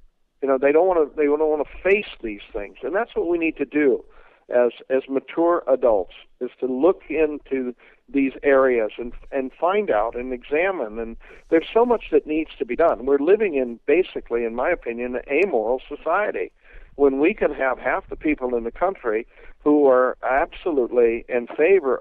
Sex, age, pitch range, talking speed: male, 60-79, 125-175 Hz, 190 wpm